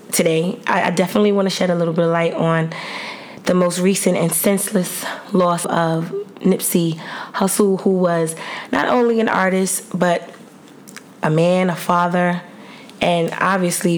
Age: 20-39